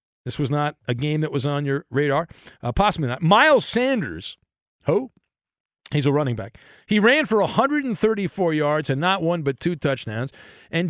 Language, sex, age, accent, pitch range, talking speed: English, male, 50-69, American, 135-200 Hz, 180 wpm